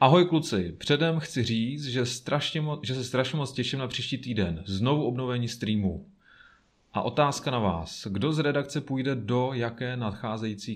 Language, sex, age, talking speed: Czech, male, 30-49, 160 wpm